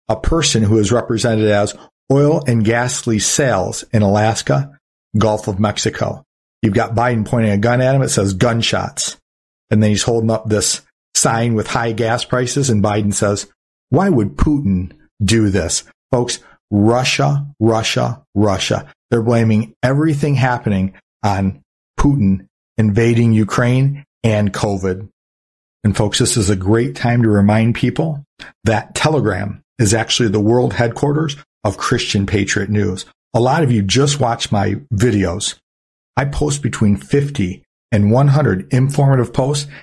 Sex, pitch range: male, 105-135 Hz